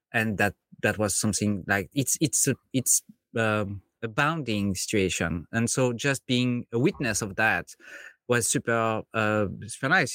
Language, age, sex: English, 30-49, male